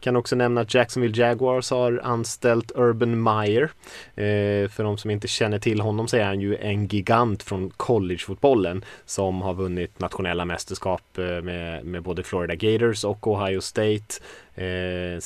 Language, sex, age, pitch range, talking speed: Swedish, male, 20-39, 95-115 Hz, 155 wpm